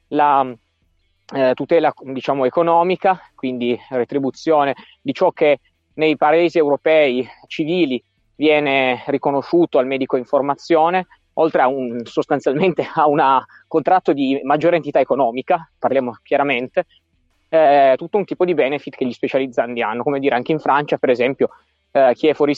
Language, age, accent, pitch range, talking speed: Italian, 20-39, native, 125-155 Hz, 145 wpm